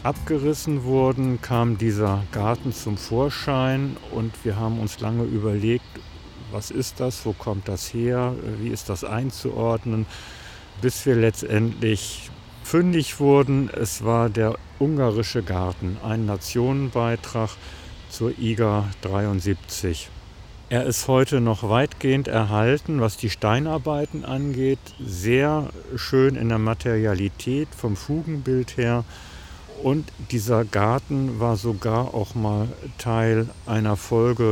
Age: 50-69